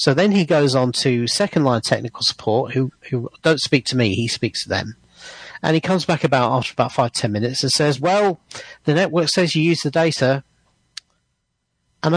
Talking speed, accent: 195 wpm, British